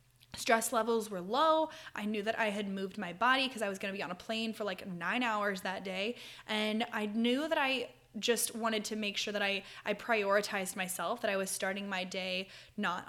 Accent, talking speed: American, 225 wpm